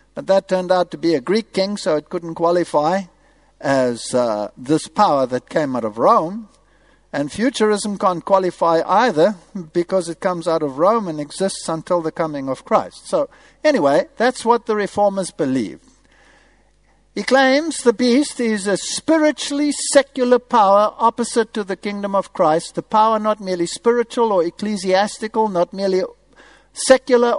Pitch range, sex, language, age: 180-245 Hz, male, Danish, 60-79